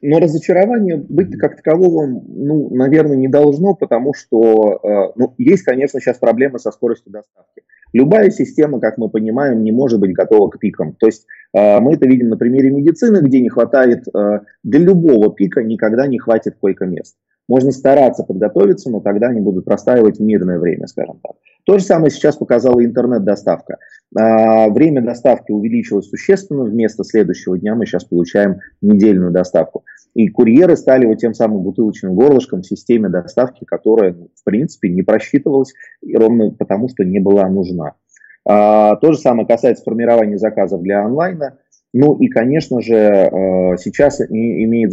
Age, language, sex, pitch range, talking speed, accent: 30-49, Russian, male, 100-135 Hz, 150 wpm, native